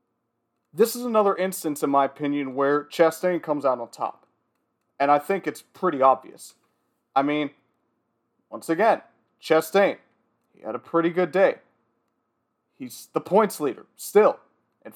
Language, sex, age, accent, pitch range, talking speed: English, male, 30-49, American, 130-180 Hz, 145 wpm